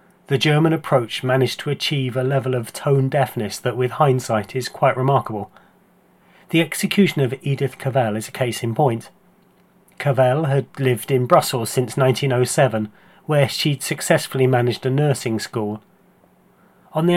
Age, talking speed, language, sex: 40-59, 145 wpm, English, male